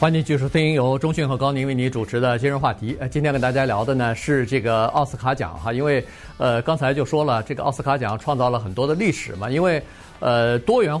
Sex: male